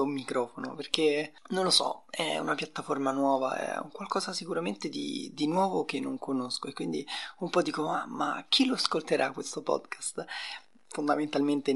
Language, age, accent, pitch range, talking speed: Italian, 20-39, native, 135-160 Hz, 165 wpm